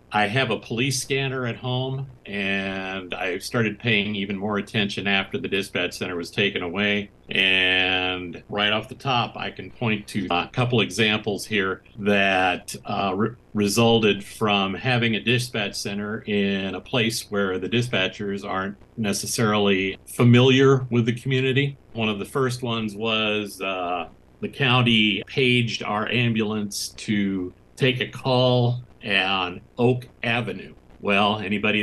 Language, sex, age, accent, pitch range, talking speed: English, male, 50-69, American, 95-120 Hz, 140 wpm